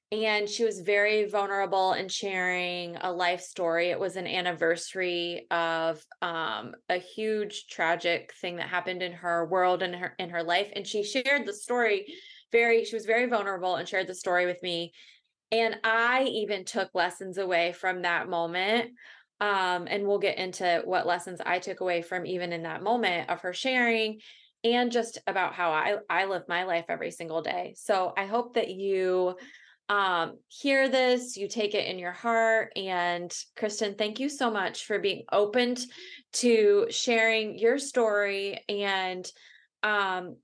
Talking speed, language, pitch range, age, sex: 170 wpm, English, 180-235 Hz, 20-39, female